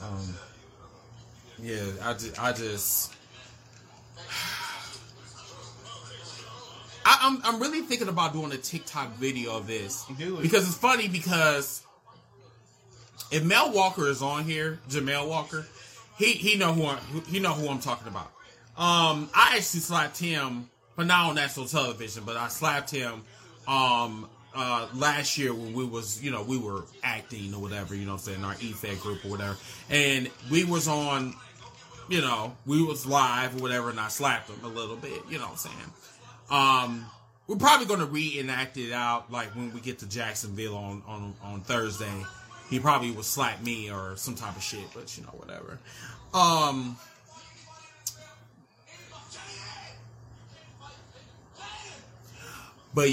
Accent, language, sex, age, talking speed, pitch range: American, English, male, 30-49, 155 wpm, 115-145 Hz